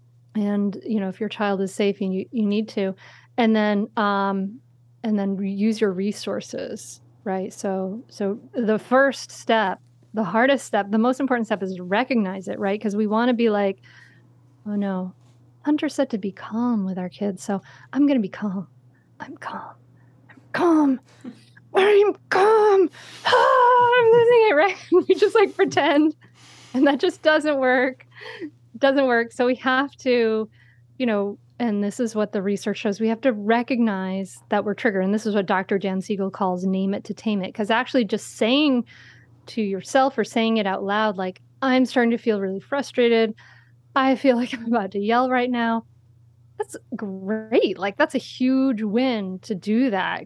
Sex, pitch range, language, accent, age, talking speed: female, 190-250 Hz, English, American, 30-49, 185 wpm